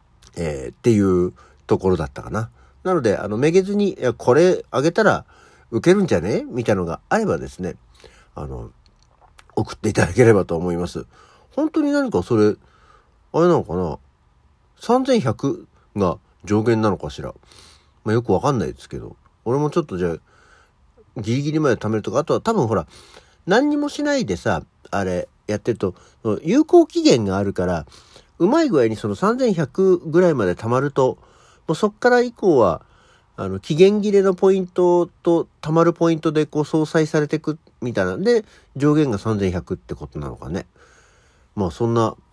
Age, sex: 50-69, male